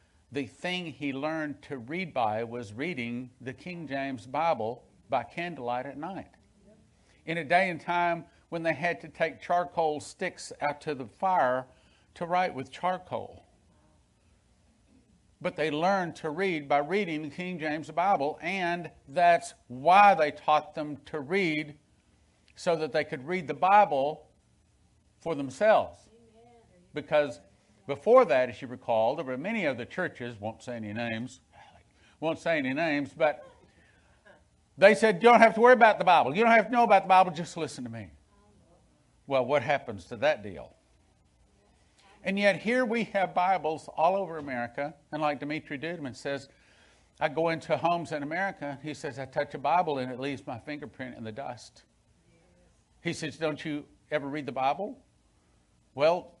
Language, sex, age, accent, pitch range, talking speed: English, male, 50-69, American, 130-175 Hz, 165 wpm